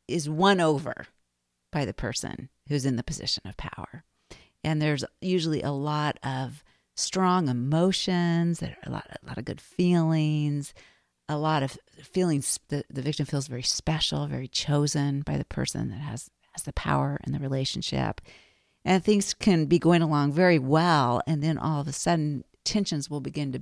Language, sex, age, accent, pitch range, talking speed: English, female, 40-59, American, 130-170 Hz, 175 wpm